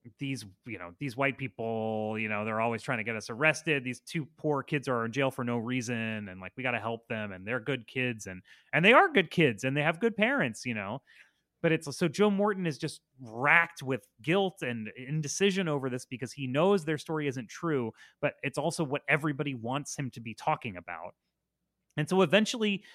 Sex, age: male, 30-49